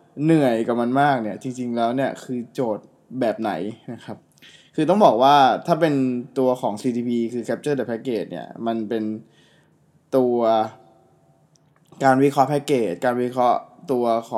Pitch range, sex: 120-150 Hz, male